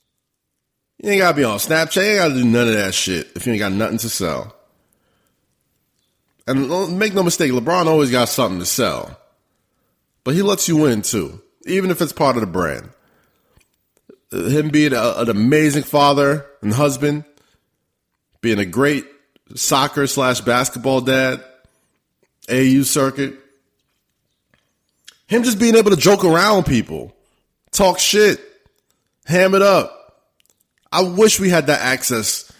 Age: 30-49